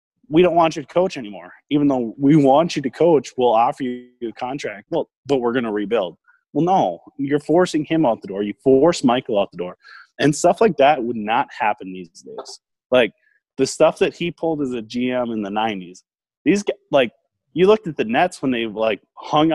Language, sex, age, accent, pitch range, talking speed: English, male, 20-39, American, 110-155 Hz, 220 wpm